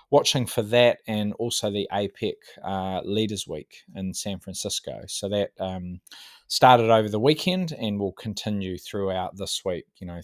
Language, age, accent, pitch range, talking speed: English, 20-39, Australian, 95-115 Hz, 165 wpm